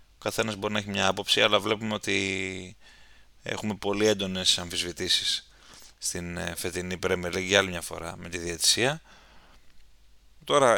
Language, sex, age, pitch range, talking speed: Greek, male, 20-39, 95-120 Hz, 140 wpm